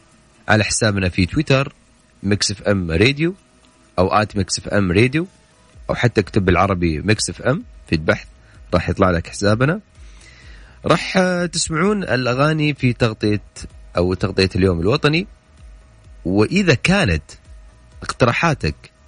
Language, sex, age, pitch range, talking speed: Arabic, male, 30-49, 85-125 Hz, 120 wpm